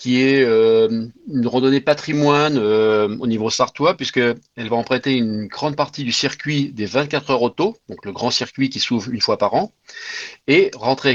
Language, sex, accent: French, male, French